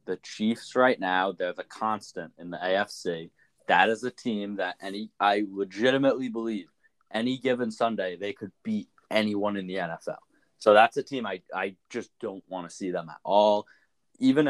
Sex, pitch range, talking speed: male, 100-120 Hz, 180 wpm